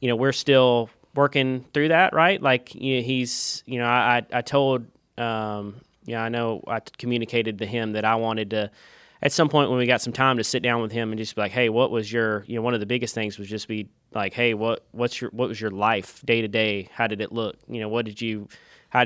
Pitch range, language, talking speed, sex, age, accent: 110-120 Hz, English, 265 wpm, male, 20-39, American